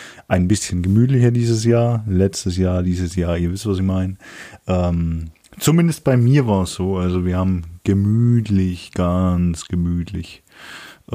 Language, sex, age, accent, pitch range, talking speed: German, male, 30-49, German, 90-115 Hz, 150 wpm